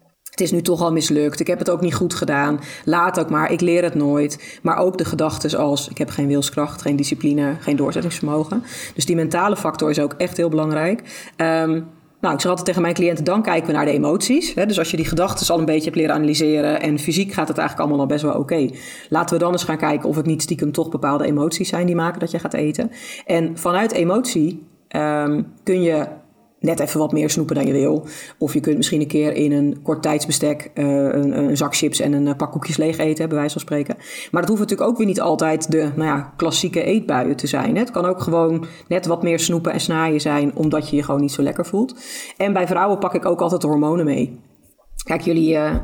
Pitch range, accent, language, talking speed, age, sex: 150-180 Hz, Dutch, Dutch, 245 wpm, 30-49, female